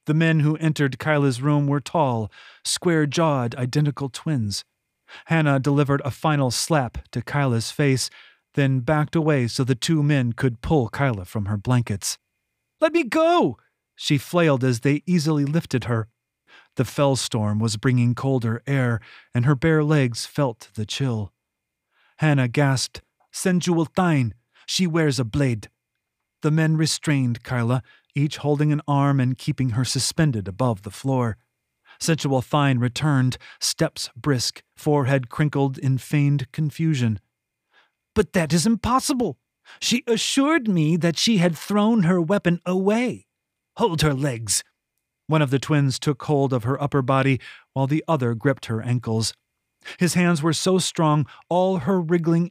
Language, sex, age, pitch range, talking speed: English, male, 30-49, 125-160 Hz, 150 wpm